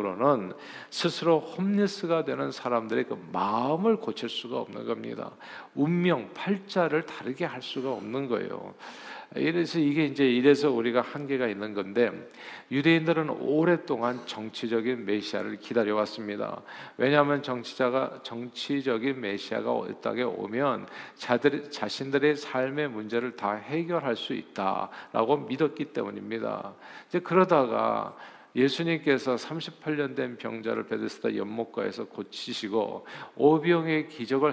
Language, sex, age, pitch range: Korean, male, 50-69, 115-150 Hz